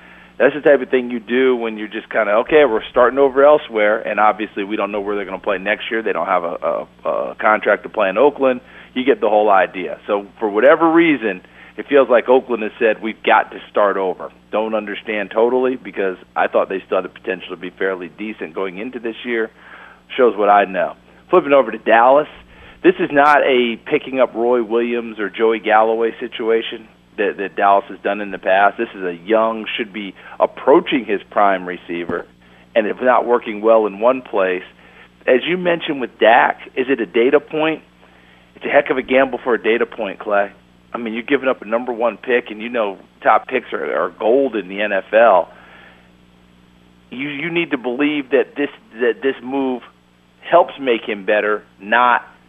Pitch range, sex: 95-125 Hz, male